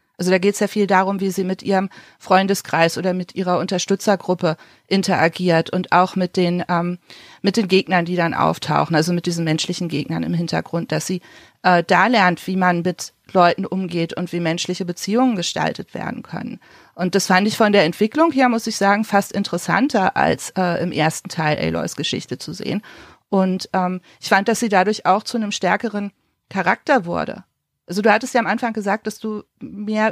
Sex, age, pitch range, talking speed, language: female, 40-59, 180-210 Hz, 195 wpm, German